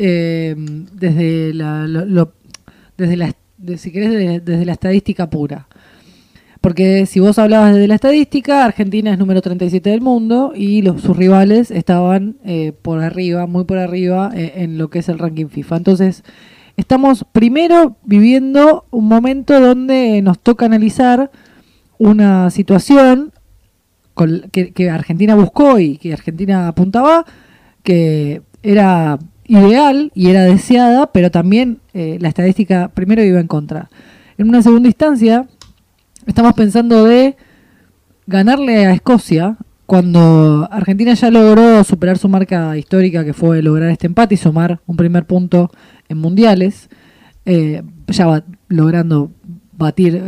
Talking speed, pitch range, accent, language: 125 wpm, 170-225 Hz, Argentinian, Spanish